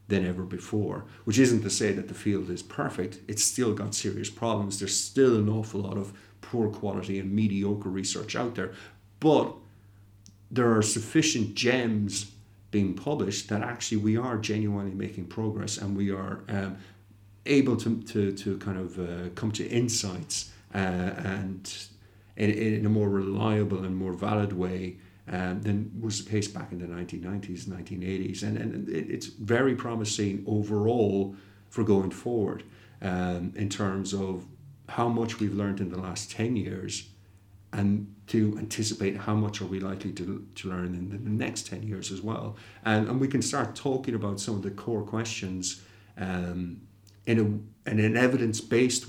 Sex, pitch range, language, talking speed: male, 95-110 Hz, English, 170 wpm